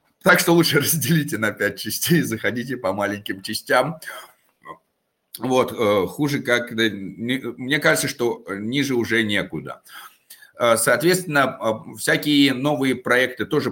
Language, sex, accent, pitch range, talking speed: Russian, male, native, 115-150 Hz, 110 wpm